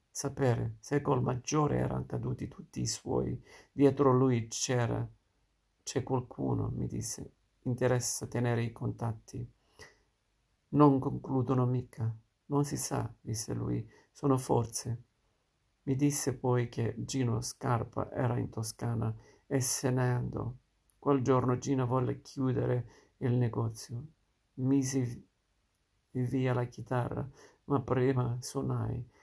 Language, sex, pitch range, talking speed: Italian, male, 115-130 Hz, 115 wpm